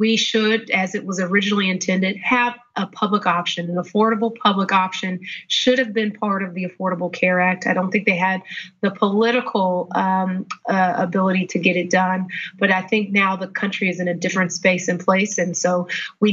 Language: English